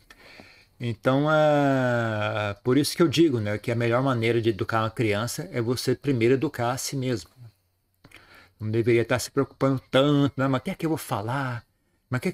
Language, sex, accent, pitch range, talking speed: Portuguese, male, Brazilian, 105-135 Hz, 205 wpm